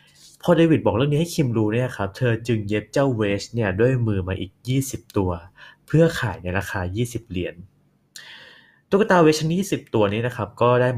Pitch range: 95-130 Hz